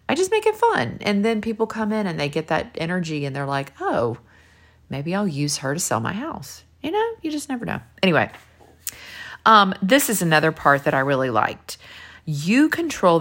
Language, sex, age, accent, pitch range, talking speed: English, female, 40-59, American, 140-185 Hz, 205 wpm